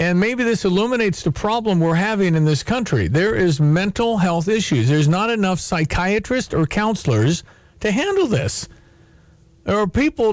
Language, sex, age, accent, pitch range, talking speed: English, male, 50-69, American, 150-195 Hz, 165 wpm